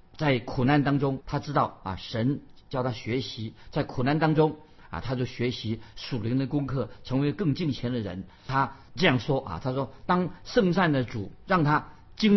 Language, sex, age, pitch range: Chinese, male, 50-69, 115-150 Hz